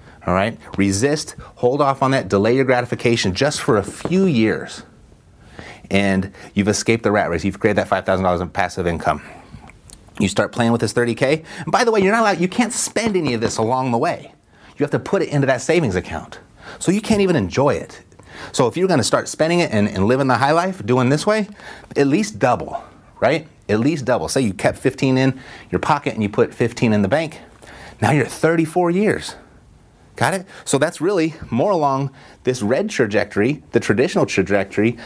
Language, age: English, 30-49